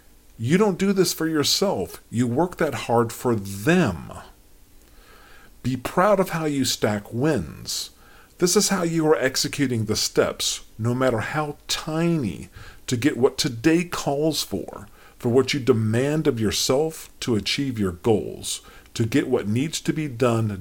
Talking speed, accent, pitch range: 155 wpm, American, 110-160 Hz